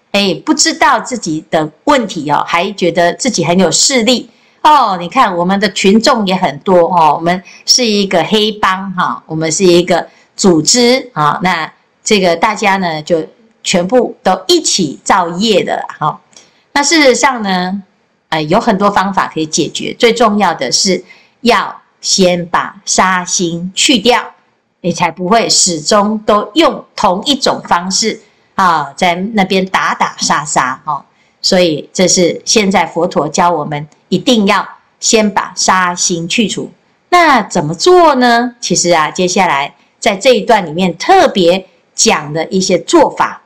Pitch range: 175-230 Hz